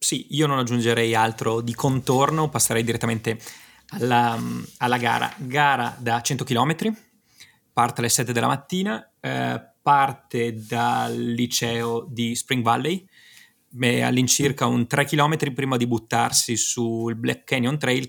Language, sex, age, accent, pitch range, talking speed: Italian, male, 20-39, native, 115-135 Hz, 130 wpm